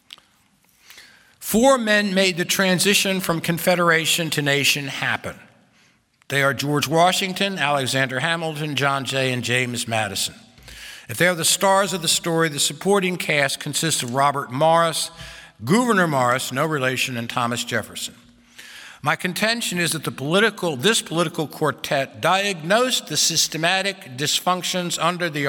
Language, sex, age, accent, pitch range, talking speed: English, male, 60-79, American, 135-185 Hz, 135 wpm